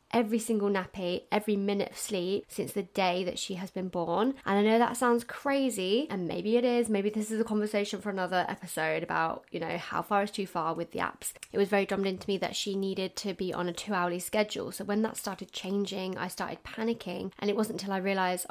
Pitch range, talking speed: 180-210 Hz, 235 wpm